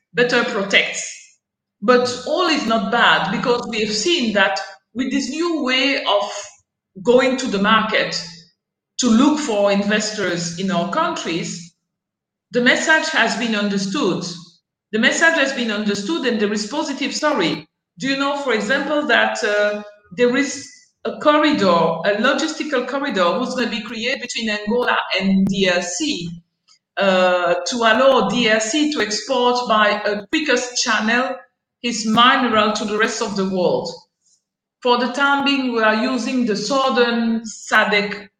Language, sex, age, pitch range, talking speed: English, female, 50-69, 200-260 Hz, 145 wpm